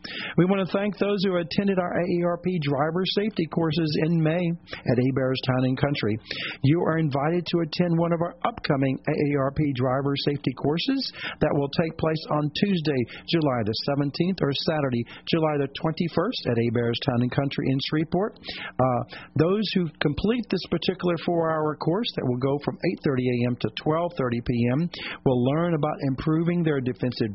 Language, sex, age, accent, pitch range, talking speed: English, male, 50-69, American, 130-175 Hz, 165 wpm